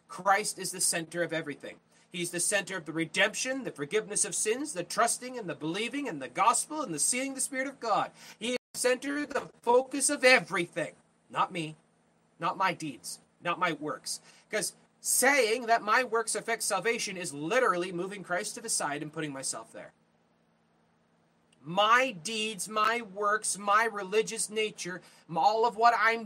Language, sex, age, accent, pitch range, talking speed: English, male, 30-49, American, 150-230 Hz, 175 wpm